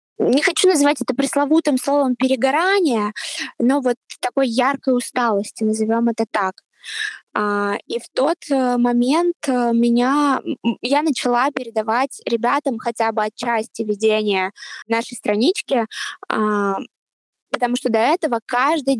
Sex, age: female, 20-39